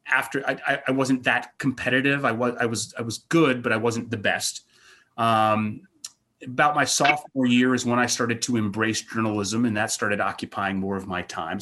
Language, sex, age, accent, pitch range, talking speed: English, male, 30-49, American, 100-135 Hz, 195 wpm